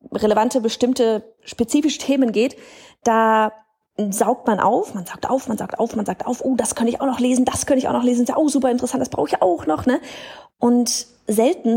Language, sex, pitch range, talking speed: German, female, 210-260 Hz, 225 wpm